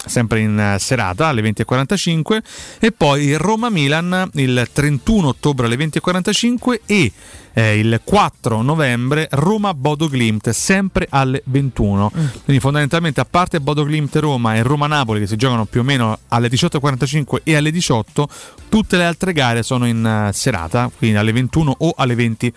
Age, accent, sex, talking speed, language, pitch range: 30-49, native, male, 145 wpm, Italian, 115-150 Hz